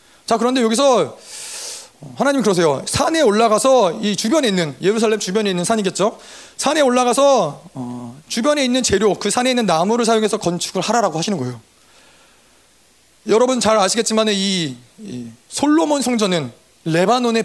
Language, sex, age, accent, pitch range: Korean, male, 30-49, native, 180-260 Hz